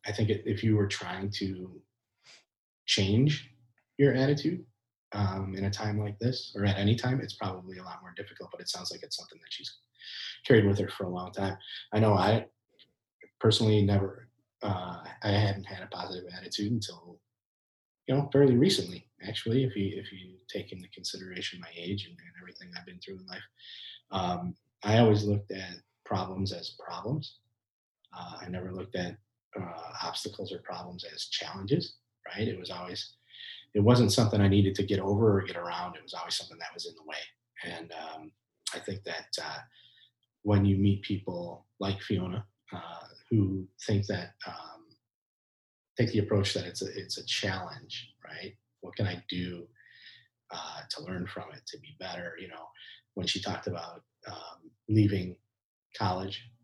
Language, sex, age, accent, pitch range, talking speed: English, male, 30-49, American, 95-110 Hz, 175 wpm